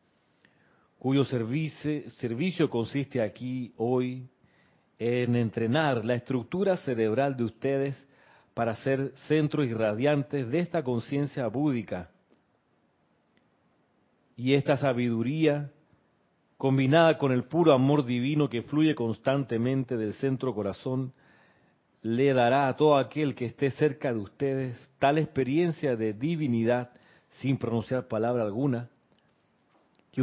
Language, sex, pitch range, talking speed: Spanish, male, 115-140 Hz, 110 wpm